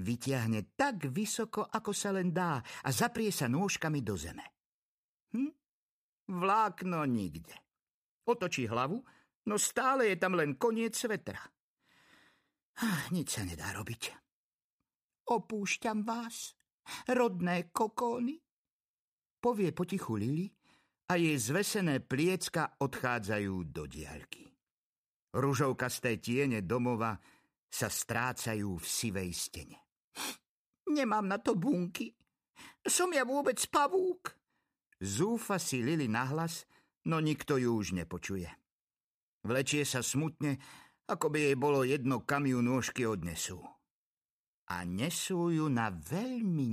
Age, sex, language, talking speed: 50-69, male, Slovak, 110 wpm